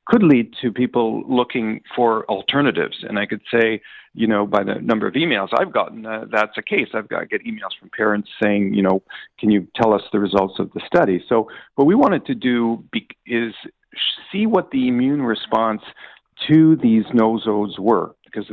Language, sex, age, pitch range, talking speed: English, male, 50-69, 105-125 Hz, 200 wpm